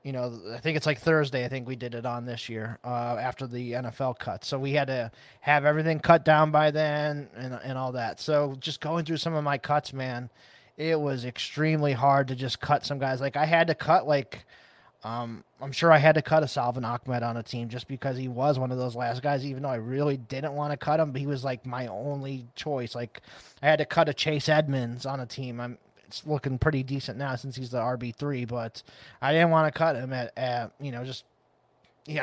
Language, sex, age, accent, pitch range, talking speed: English, male, 20-39, American, 125-150 Hz, 240 wpm